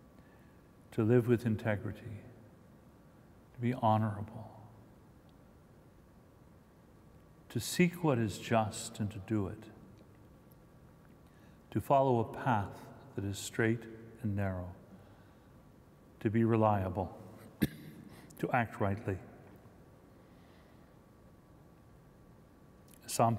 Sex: male